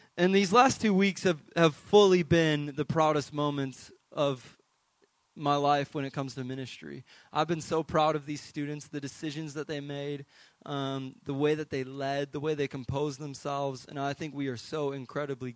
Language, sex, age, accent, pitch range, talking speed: English, male, 20-39, American, 130-150 Hz, 195 wpm